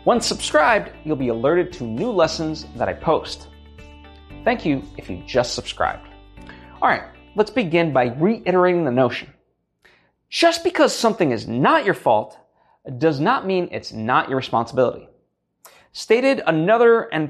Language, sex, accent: English, male, American